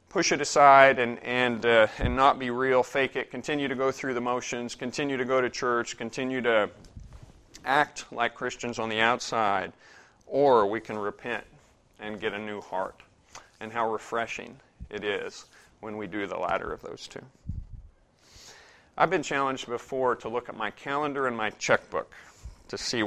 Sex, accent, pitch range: male, American, 110-130 Hz